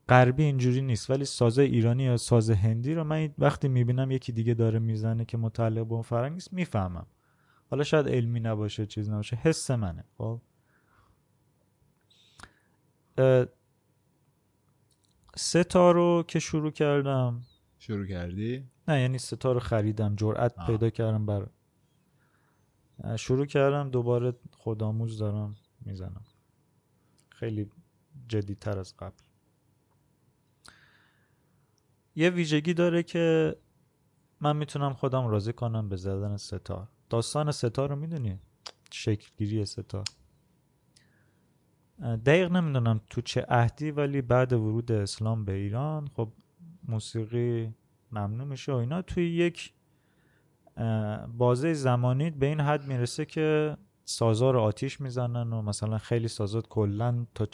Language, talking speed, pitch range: Persian, 115 wpm, 110-140 Hz